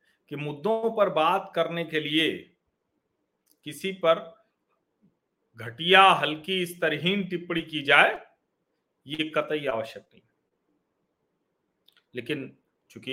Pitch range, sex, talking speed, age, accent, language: 130-165 Hz, male, 90 wpm, 40-59, native, Hindi